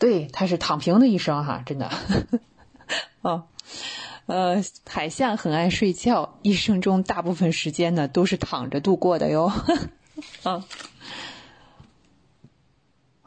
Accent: native